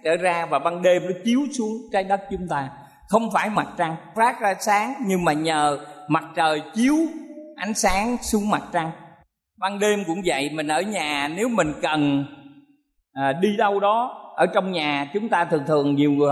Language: Vietnamese